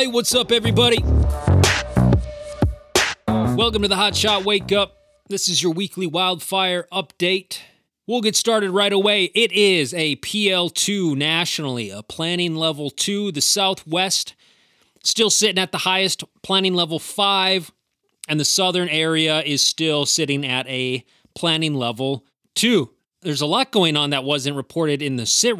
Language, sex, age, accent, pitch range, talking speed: English, male, 30-49, American, 135-185 Hz, 150 wpm